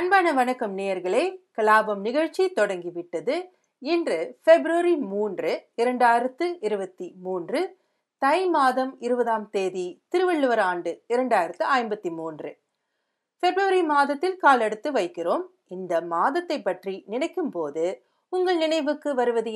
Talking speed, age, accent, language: 100 wpm, 40-59, native, Tamil